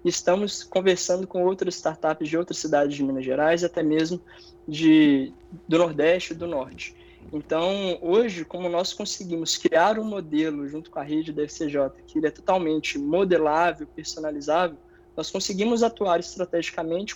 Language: Portuguese